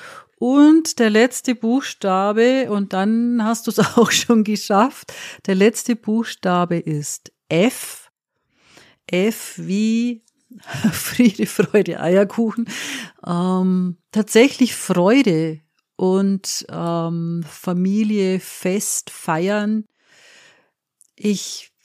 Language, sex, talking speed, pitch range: German, female, 85 wpm, 180-225 Hz